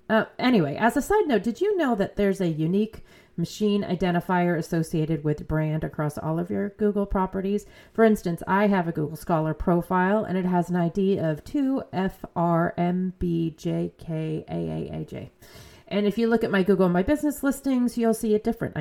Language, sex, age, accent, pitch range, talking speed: English, female, 30-49, American, 165-210 Hz, 170 wpm